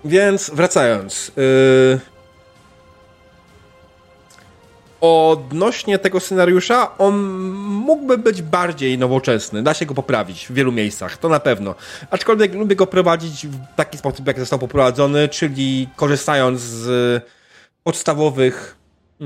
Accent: native